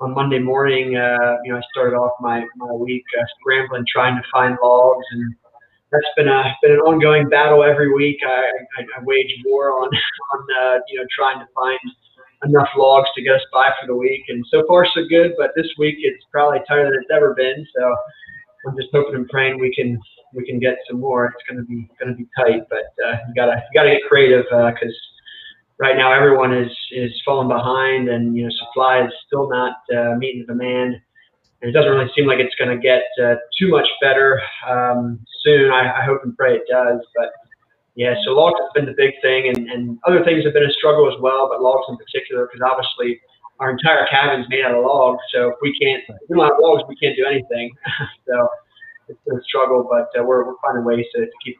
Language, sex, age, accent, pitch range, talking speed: English, male, 20-39, American, 125-145 Hz, 225 wpm